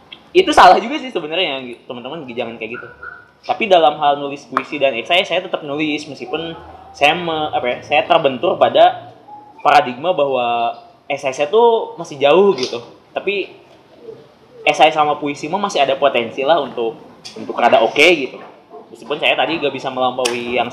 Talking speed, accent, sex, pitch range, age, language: 160 wpm, native, male, 130-180 Hz, 20-39, Indonesian